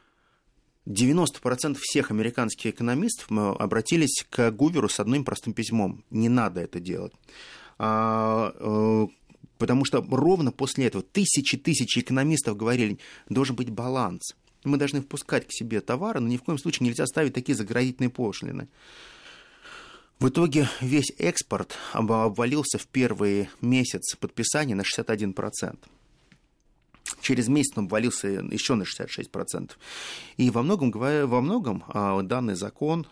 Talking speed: 120 wpm